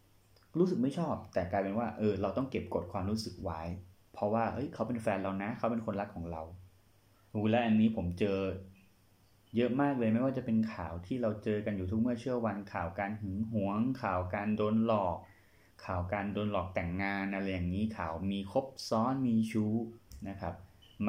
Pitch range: 95-110 Hz